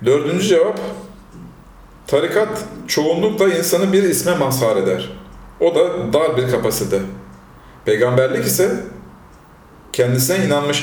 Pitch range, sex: 120-175 Hz, male